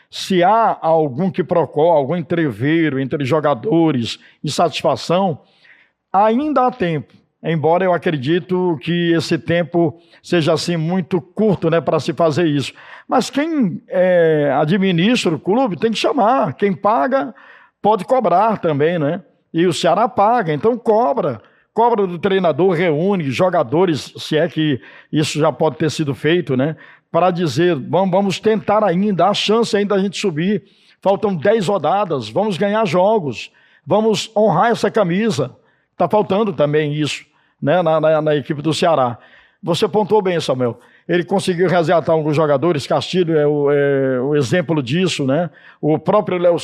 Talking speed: 150 wpm